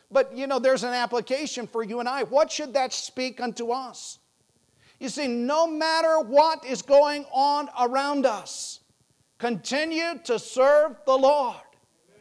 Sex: male